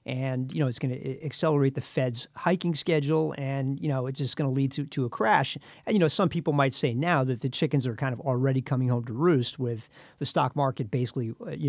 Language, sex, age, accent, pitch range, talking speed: English, male, 50-69, American, 130-150 Hz, 245 wpm